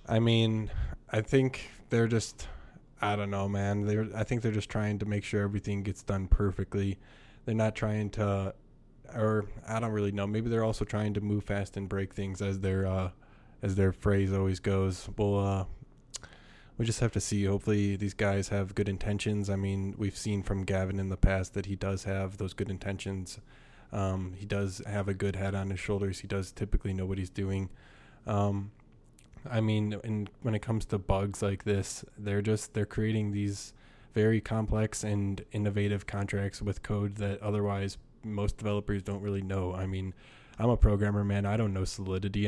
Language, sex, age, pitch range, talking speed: English, male, 20-39, 95-105 Hz, 190 wpm